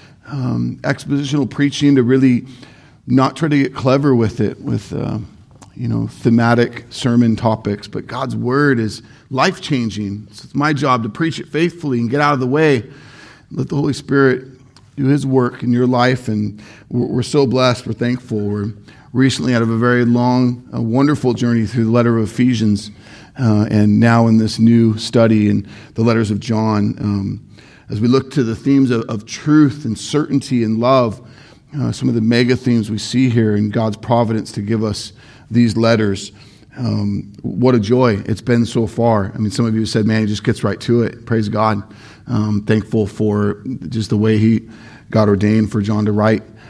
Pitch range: 110-130 Hz